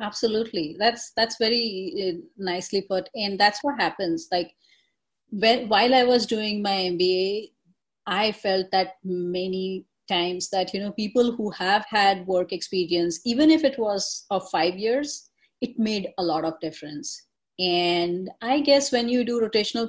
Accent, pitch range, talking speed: Indian, 185-235 Hz, 155 wpm